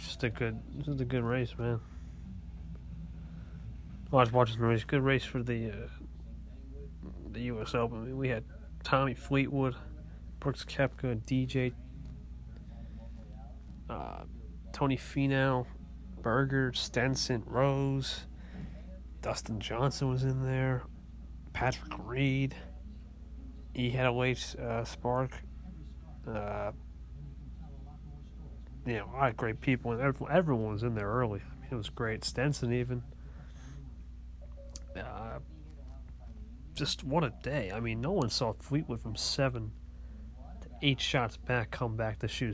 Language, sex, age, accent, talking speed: English, male, 30-49, American, 125 wpm